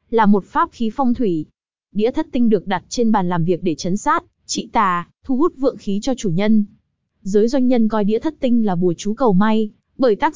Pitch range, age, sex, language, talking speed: 200-250 Hz, 20-39, female, Vietnamese, 240 wpm